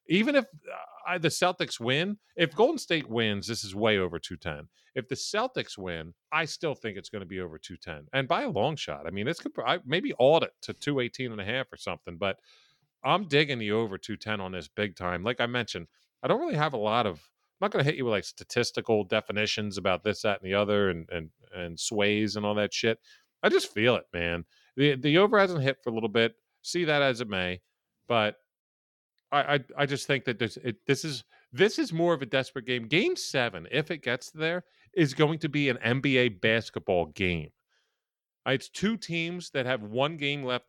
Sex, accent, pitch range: male, American, 105-155 Hz